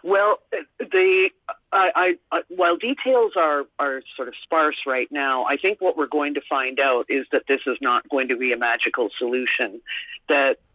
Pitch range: 125-165 Hz